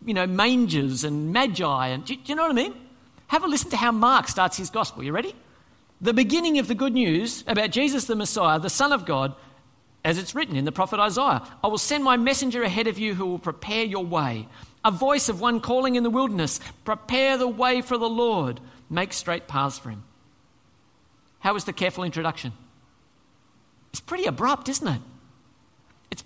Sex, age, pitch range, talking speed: male, 50-69, 155-255 Hz, 200 wpm